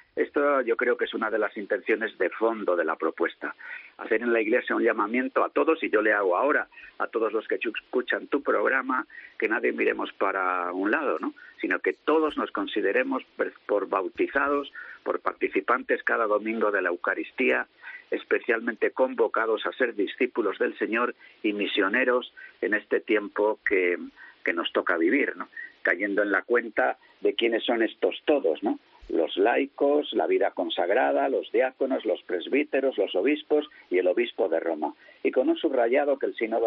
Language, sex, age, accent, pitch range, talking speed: Spanish, male, 50-69, Spanish, 280-455 Hz, 175 wpm